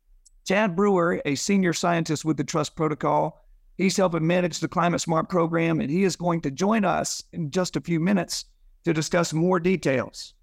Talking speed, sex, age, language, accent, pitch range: 185 wpm, male, 50-69, English, American, 155-185 Hz